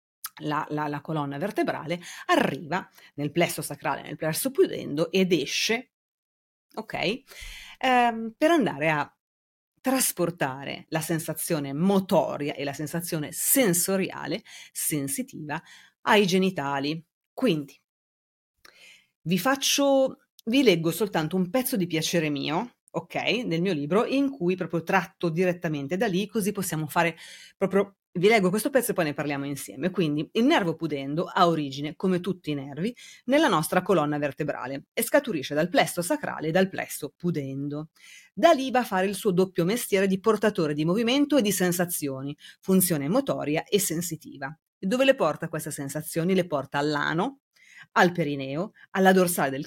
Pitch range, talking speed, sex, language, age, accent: 150-200 Hz, 145 wpm, female, Italian, 30-49, native